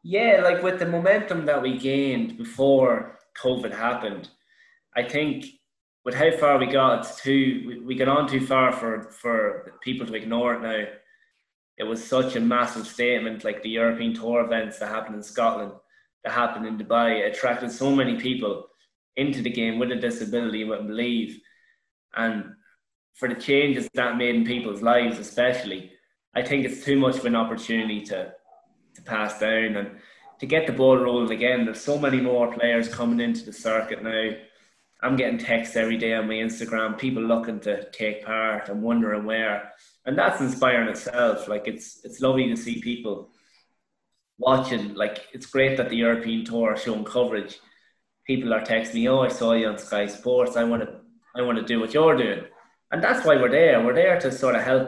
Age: 20-39